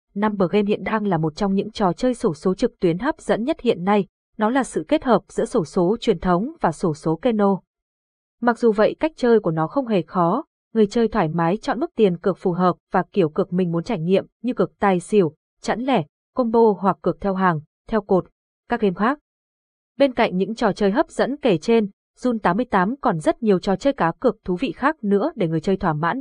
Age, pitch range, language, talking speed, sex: 20-39, 185-235 Hz, Vietnamese, 235 wpm, female